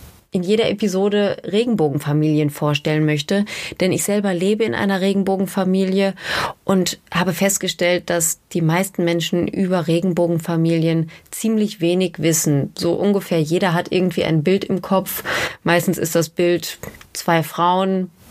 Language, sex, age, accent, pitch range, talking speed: German, female, 30-49, German, 170-205 Hz, 130 wpm